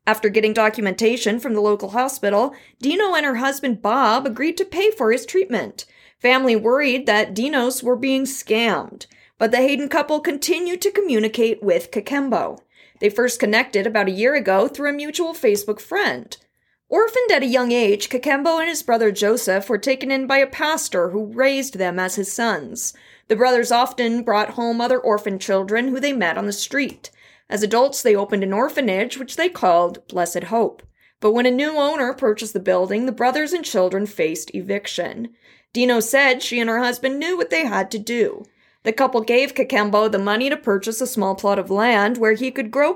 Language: English